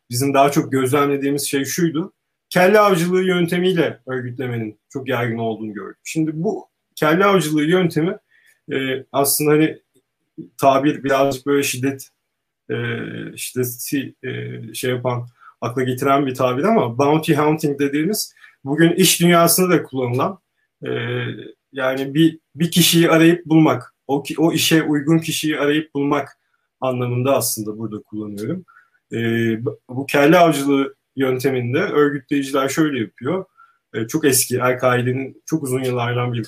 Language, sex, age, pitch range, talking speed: Turkish, male, 40-59, 130-160 Hz, 130 wpm